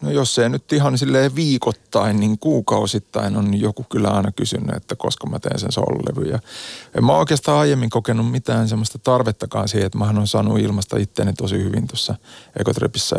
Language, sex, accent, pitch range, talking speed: Finnish, male, native, 105-125 Hz, 180 wpm